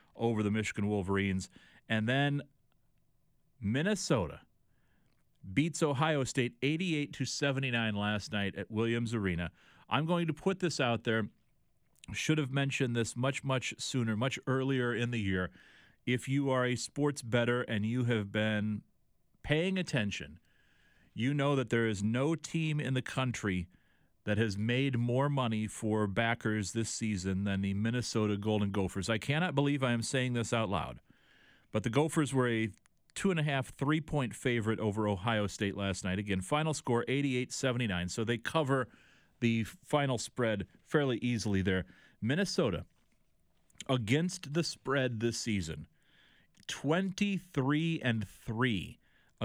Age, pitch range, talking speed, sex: 40-59, 105-140 Hz, 140 wpm, male